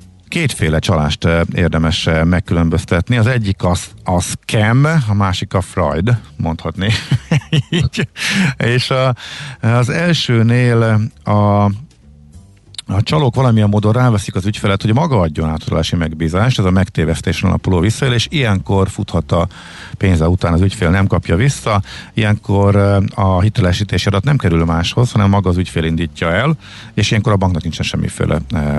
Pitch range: 85-115 Hz